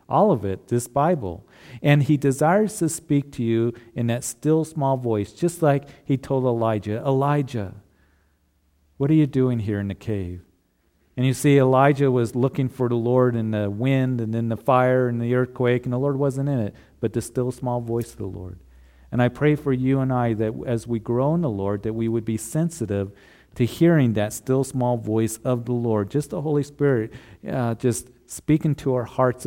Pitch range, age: 110-135 Hz, 40-59